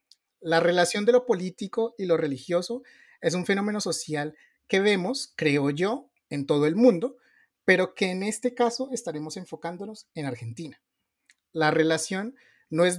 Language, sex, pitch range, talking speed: Spanish, male, 155-210 Hz, 150 wpm